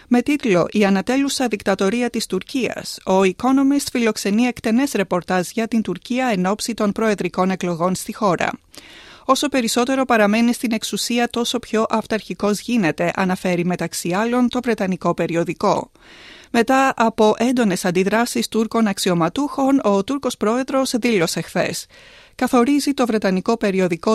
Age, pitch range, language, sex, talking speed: 30-49, 185-255 Hz, Greek, female, 125 wpm